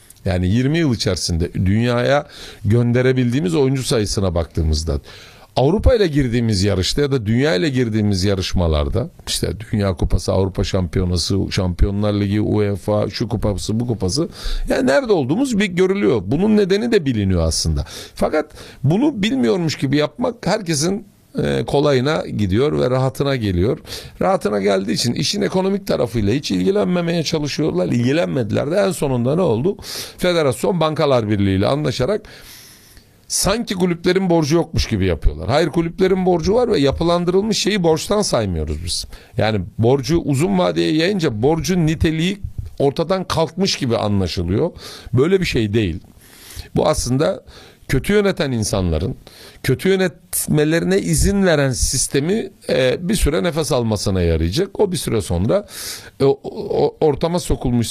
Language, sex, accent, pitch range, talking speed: Turkish, male, native, 100-165 Hz, 130 wpm